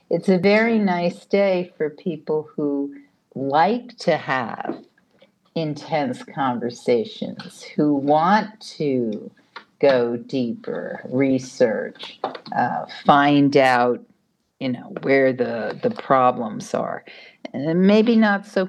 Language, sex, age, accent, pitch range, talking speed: English, female, 50-69, American, 145-200 Hz, 105 wpm